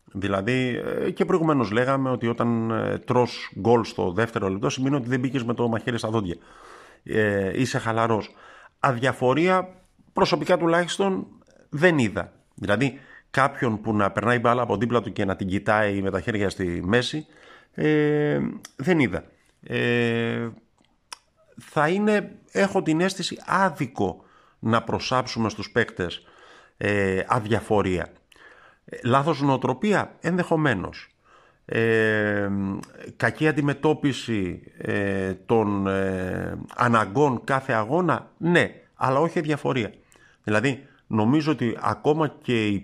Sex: male